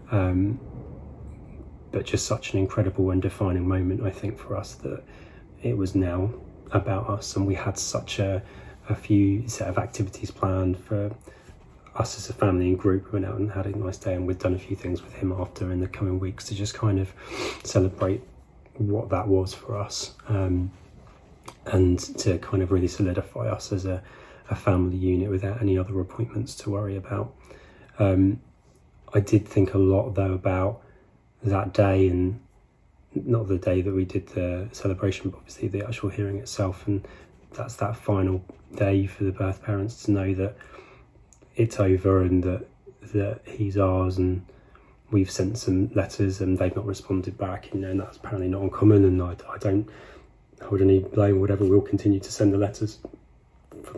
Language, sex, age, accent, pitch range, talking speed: English, male, 30-49, British, 95-105 Hz, 180 wpm